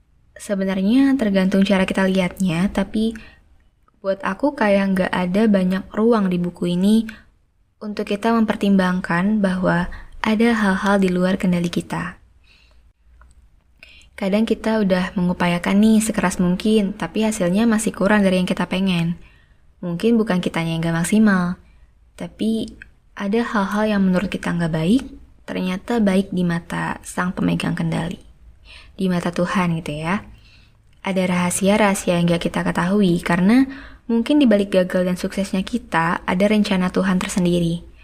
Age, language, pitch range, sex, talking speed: 20-39, Indonesian, 175-210 Hz, female, 135 wpm